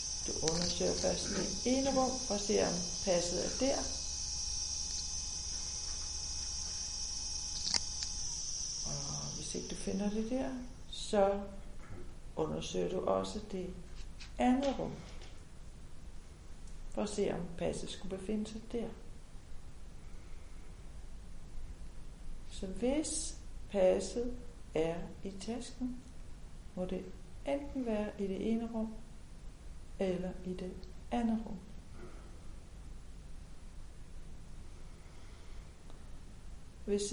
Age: 60-79